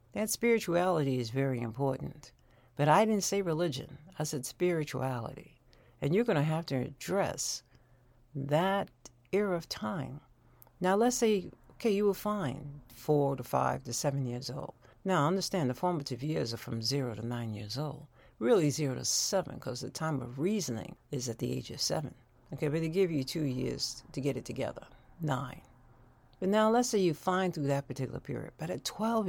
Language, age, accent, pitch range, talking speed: English, 60-79, American, 125-160 Hz, 185 wpm